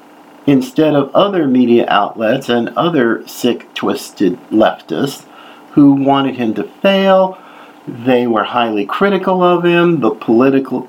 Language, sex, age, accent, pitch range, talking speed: English, male, 50-69, American, 125-190 Hz, 125 wpm